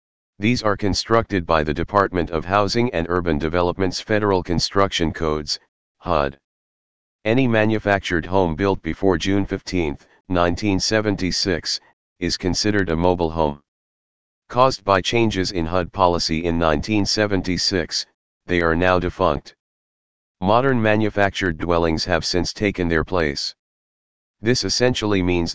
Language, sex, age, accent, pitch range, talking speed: English, male, 40-59, American, 85-100 Hz, 120 wpm